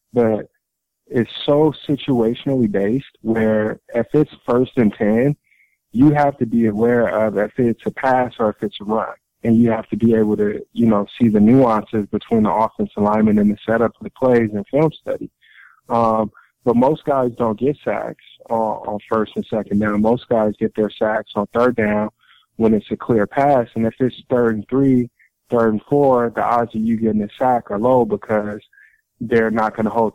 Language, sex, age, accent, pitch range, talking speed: English, male, 20-39, American, 105-120 Hz, 205 wpm